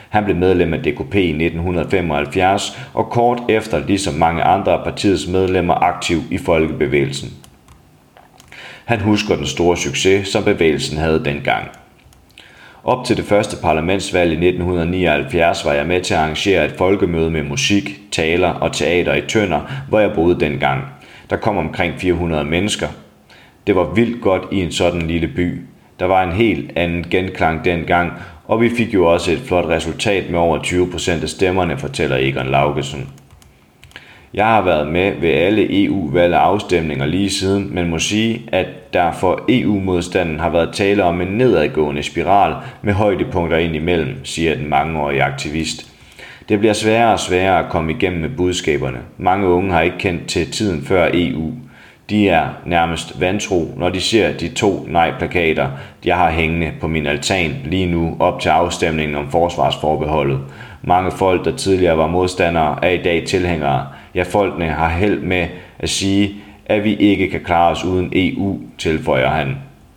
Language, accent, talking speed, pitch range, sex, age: Danish, native, 165 wpm, 80-95 Hz, male, 30-49